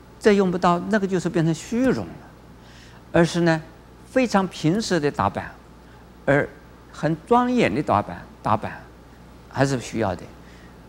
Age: 50-69